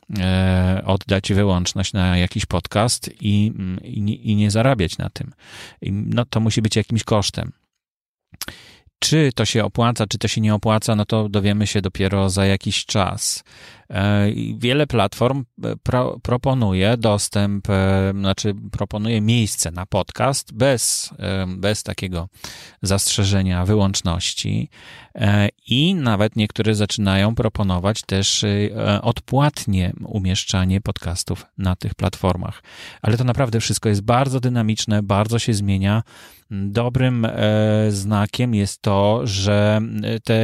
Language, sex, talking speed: Polish, male, 115 wpm